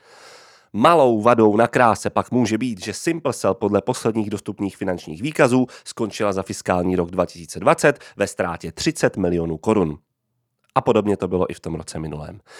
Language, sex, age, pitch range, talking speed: Czech, male, 30-49, 105-150 Hz, 155 wpm